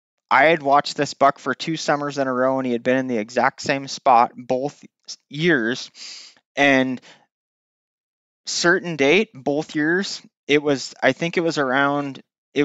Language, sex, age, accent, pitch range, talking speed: English, male, 20-39, American, 130-160 Hz, 165 wpm